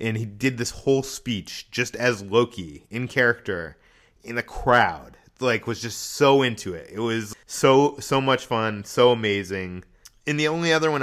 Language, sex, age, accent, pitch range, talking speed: English, male, 30-49, American, 100-130 Hz, 180 wpm